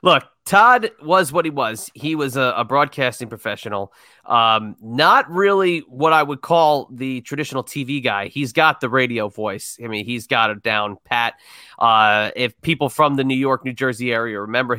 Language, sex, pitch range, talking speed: English, male, 120-160 Hz, 185 wpm